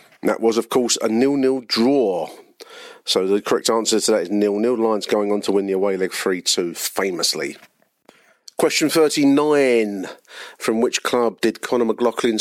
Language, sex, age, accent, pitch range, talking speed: English, male, 40-59, British, 105-140 Hz, 160 wpm